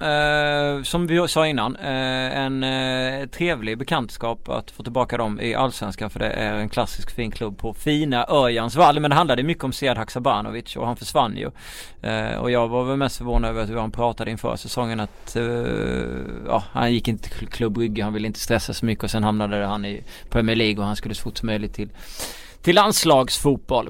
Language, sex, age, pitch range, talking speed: Swedish, male, 30-49, 105-130 Hz, 205 wpm